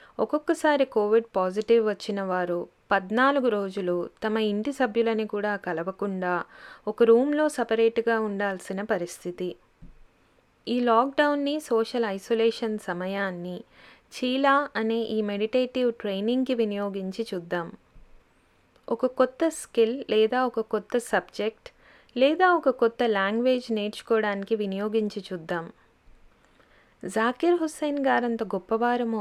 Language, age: Telugu, 20-39